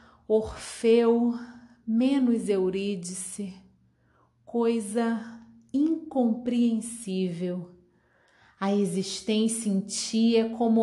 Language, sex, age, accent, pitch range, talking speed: Portuguese, female, 30-49, Brazilian, 210-285 Hz, 60 wpm